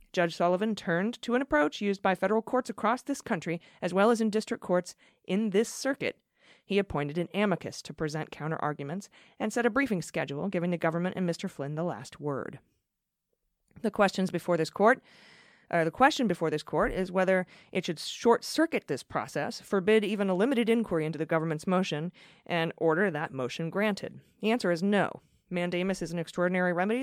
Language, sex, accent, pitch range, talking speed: English, female, American, 165-215 Hz, 185 wpm